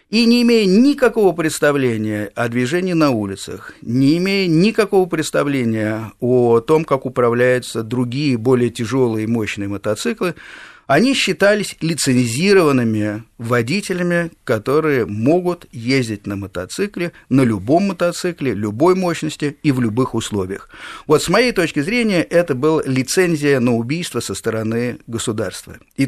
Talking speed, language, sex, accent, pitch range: 125 wpm, Russian, male, native, 115-165 Hz